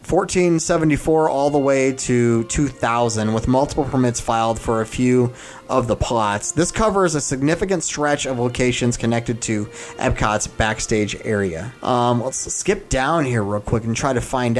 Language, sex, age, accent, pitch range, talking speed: English, male, 30-49, American, 115-140 Hz, 160 wpm